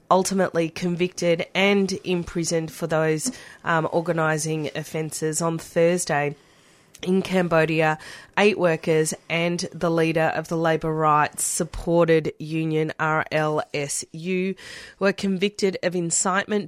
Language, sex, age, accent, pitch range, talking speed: English, female, 30-49, Australian, 160-185 Hz, 105 wpm